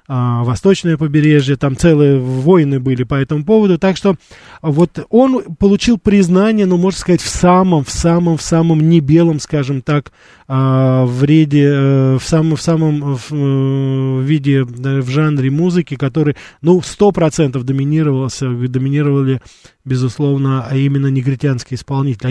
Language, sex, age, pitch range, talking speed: Russian, male, 20-39, 130-160 Hz, 125 wpm